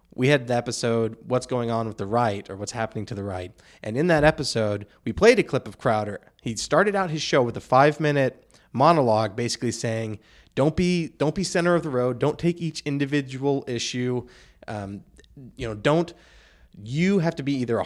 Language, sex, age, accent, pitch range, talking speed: English, male, 20-39, American, 110-140 Hz, 205 wpm